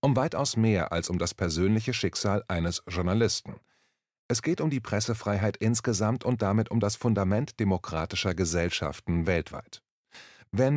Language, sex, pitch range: German, male, 95-120 Hz